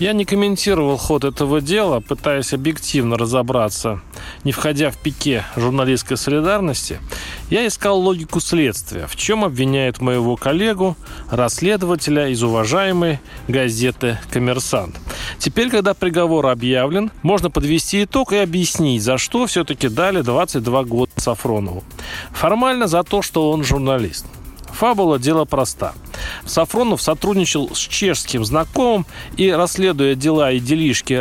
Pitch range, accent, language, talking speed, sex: 125-185 Hz, native, Russian, 125 wpm, male